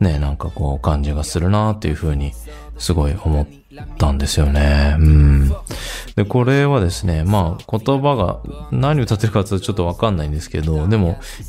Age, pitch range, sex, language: 20-39, 75-115 Hz, male, Japanese